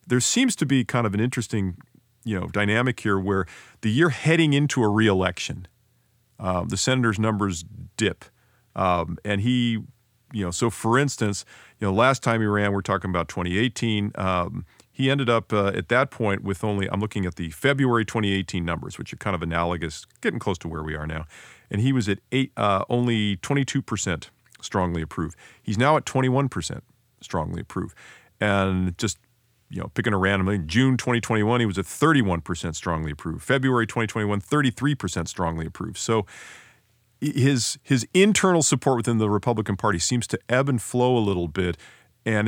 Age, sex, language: 40-59, male, English